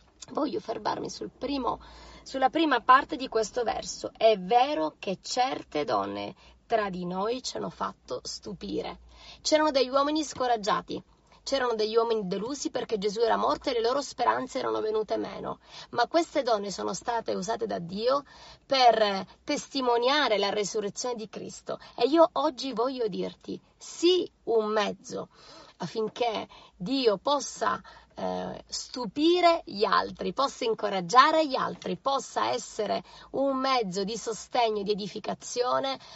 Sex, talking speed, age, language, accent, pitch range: female, 135 wpm, 20-39, Italian, native, 215-270 Hz